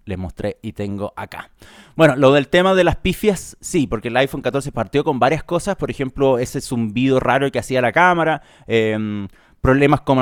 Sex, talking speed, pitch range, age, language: male, 195 wpm, 125-160 Hz, 30-49, Spanish